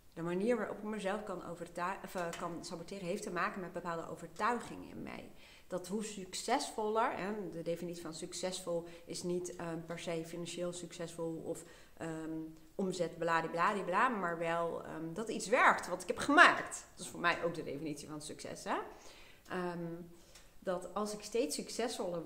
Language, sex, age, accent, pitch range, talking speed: Dutch, female, 40-59, Dutch, 165-205 Hz, 170 wpm